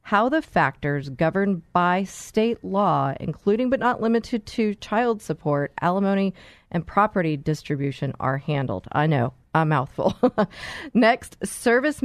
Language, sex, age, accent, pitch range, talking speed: English, female, 30-49, American, 145-200 Hz, 130 wpm